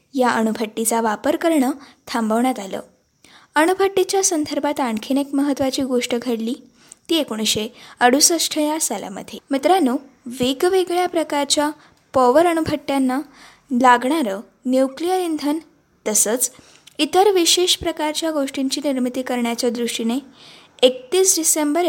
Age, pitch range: 20-39, 245-305 Hz